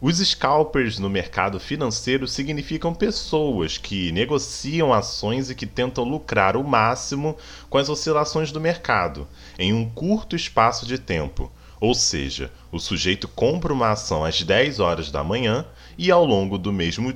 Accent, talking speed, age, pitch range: Brazilian, 155 wpm, 20-39, 95-145 Hz